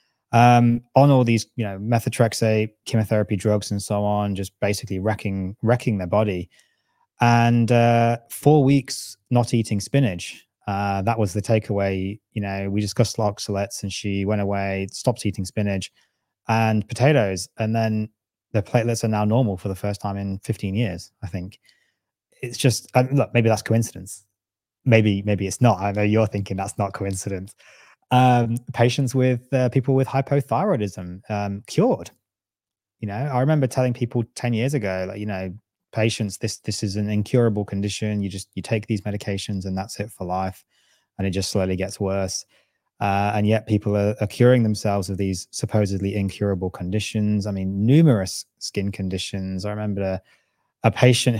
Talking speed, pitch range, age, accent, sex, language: 170 wpm, 100-115 Hz, 20-39, British, male, English